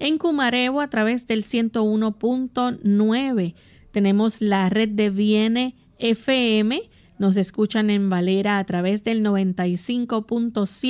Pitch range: 200-250 Hz